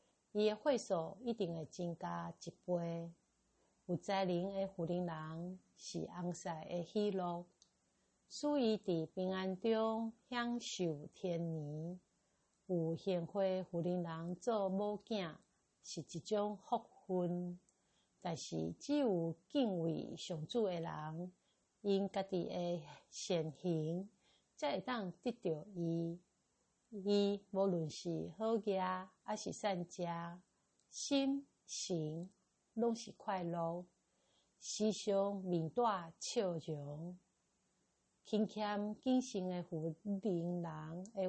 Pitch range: 175-205 Hz